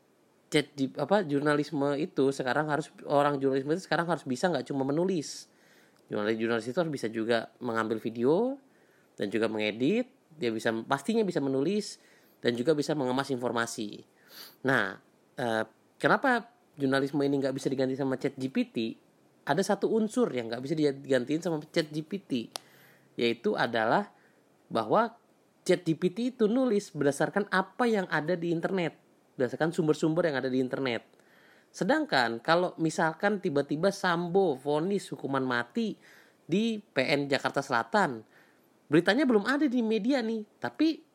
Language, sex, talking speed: Indonesian, male, 135 wpm